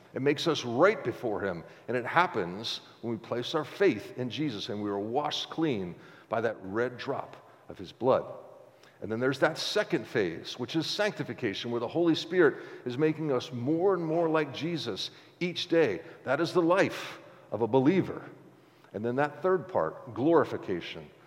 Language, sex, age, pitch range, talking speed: English, male, 50-69, 125-175 Hz, 180 wpm